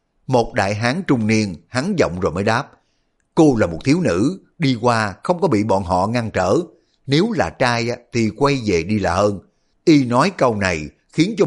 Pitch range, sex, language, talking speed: 100-130 Hz, male, Vietnamese, 205 wpm